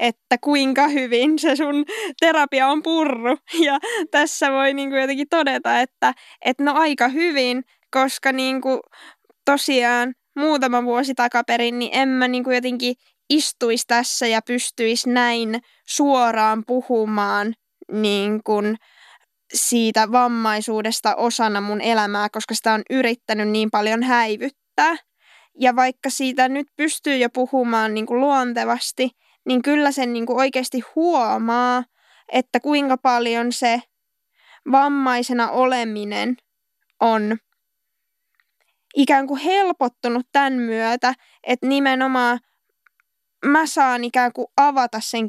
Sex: female